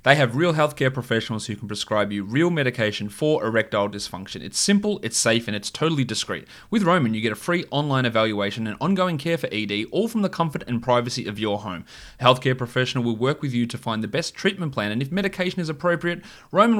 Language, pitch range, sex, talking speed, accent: English, 110-150 Hz, male, 225 wpm, Australian